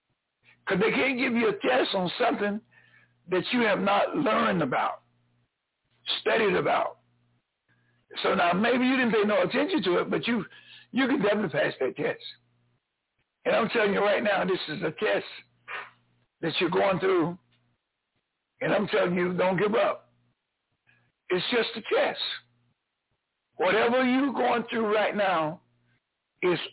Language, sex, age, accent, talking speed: English, male, 60-79, American, 150 wpm